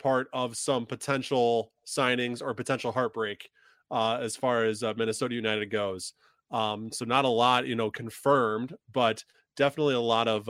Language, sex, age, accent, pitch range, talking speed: English, male, 20-39, American, 115-140 Hz, 165 wpm